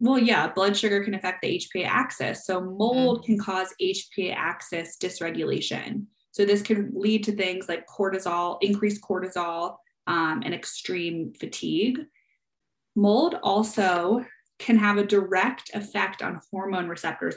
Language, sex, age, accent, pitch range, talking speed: English, female, 20-39, American, 180-220 Hz, 140 wpm